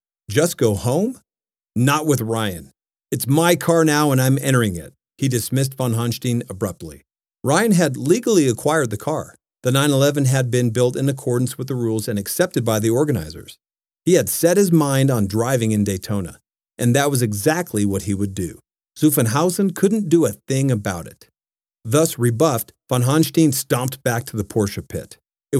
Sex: male